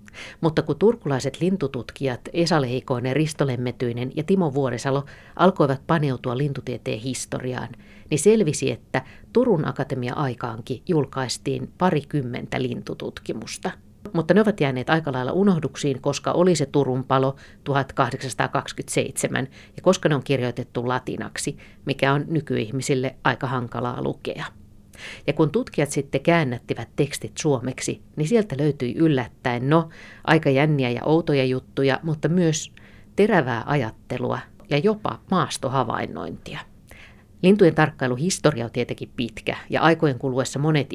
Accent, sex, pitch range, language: native, female, 125-150 Hz, Finnish